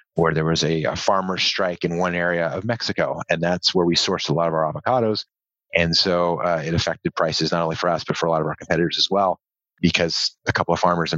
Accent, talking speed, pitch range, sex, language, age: American, 250 wpm, 85-100 Hz, male, English, 30-49